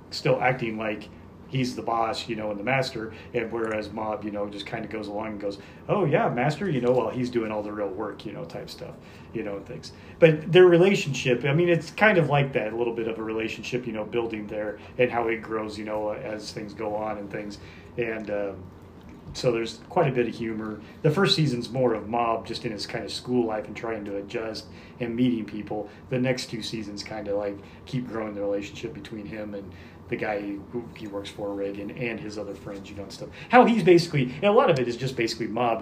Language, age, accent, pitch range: English, 30-49, American, 105-125 Hz